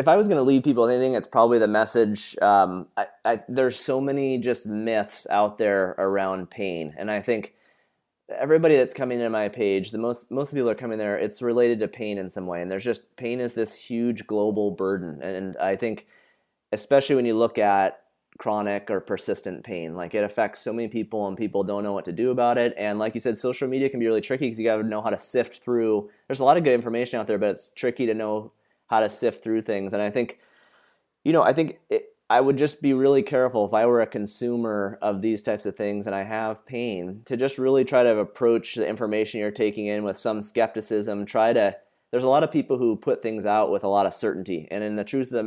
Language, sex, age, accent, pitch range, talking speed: English, male, 30-49, American, 100-120 Hz, 245 wpm